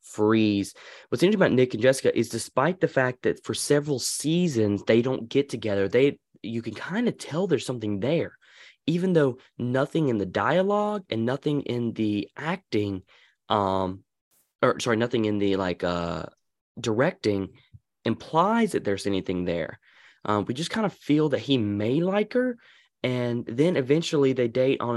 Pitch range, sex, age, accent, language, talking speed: 105-145 Hz, male, 20-39, American, English, 170 wpm